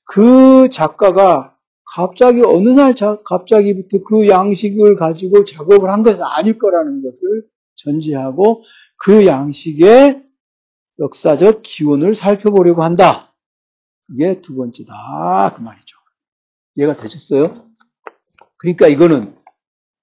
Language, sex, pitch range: Korean, male, 160-235 Hz